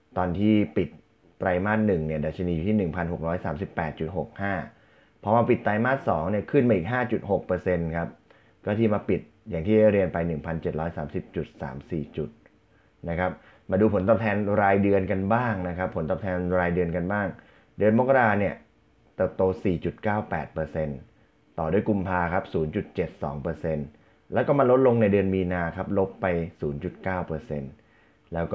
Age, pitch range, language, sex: 20-39, 80-105 Hz, Thai, male